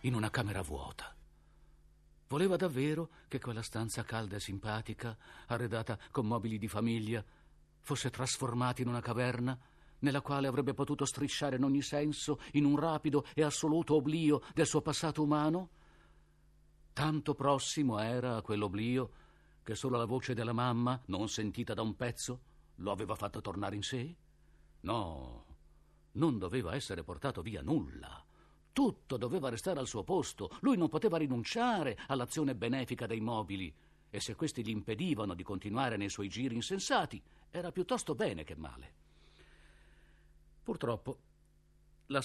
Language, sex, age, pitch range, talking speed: Italian, male, 50-69, 90-140 Hz, 145 wpm